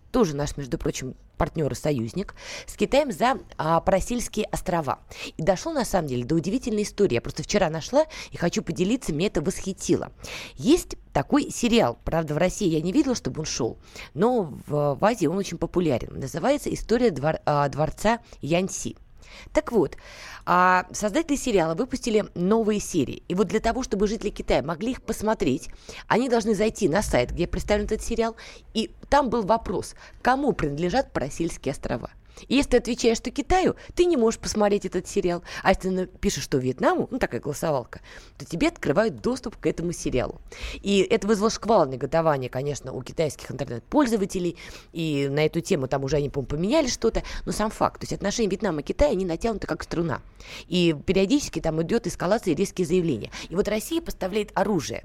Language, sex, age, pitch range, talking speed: Russian, female, 20-39, 155-225 Hz, 175 wpm